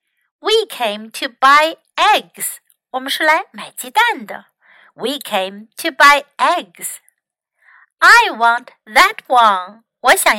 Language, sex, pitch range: Chinese, female, 225-315 Hz